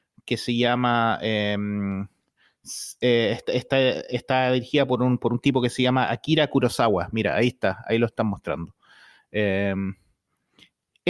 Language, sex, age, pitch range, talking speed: Spanish, male, 30-49, 125-170 Hz, 140 wpm